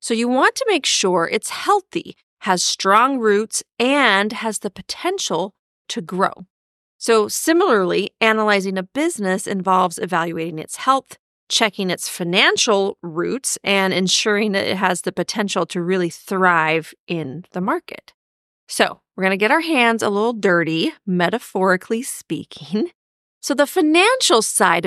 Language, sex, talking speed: English, female, 140 wpm